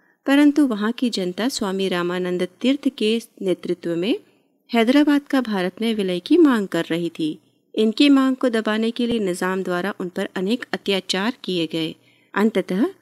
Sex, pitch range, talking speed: female, 180-255 Hz, 160 wpm